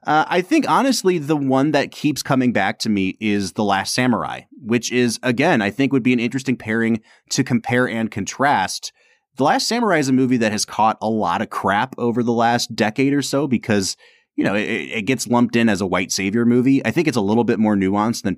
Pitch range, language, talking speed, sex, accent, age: 100-135 Hz, English, 230 wpm, male, American, 30-49